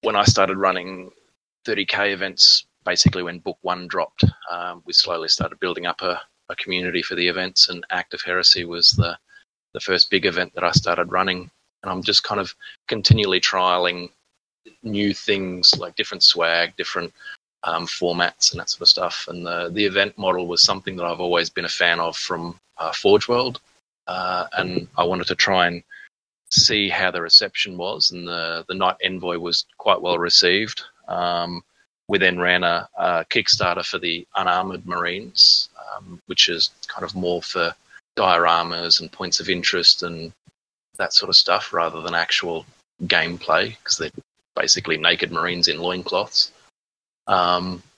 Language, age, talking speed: English, 30-49, 170 wpm